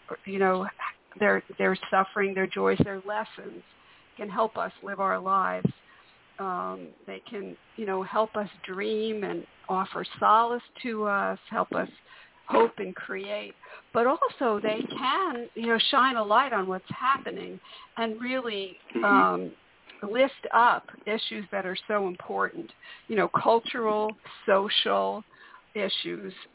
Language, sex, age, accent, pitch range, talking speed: English, female, 50-69, American, 190-225 Hz, 135 wpm